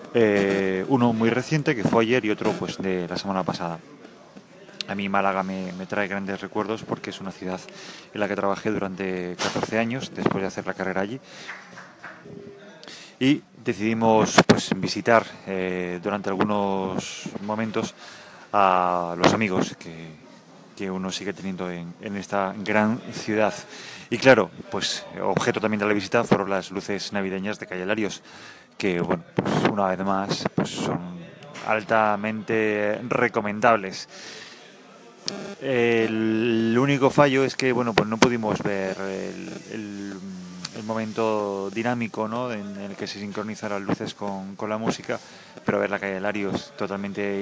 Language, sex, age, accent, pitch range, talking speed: English, male, 30-49, Spanish, 95-110 Hz, 150 wpm